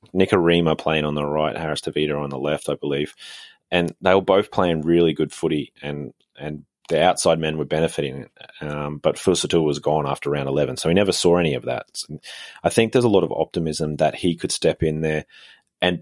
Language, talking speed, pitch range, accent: English, 215 wpm, 75-90 Hz, Australian